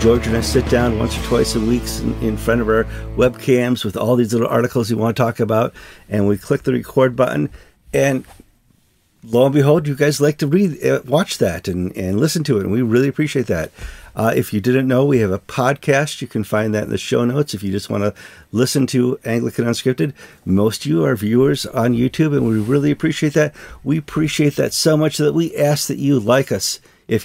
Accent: American